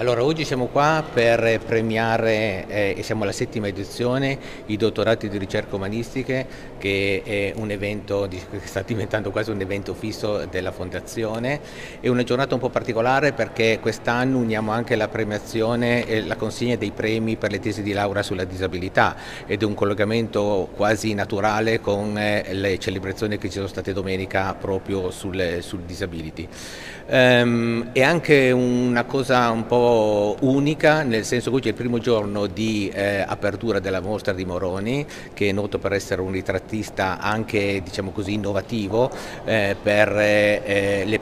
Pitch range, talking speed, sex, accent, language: 100-115 Hz, 160 wpm, male, native, Italian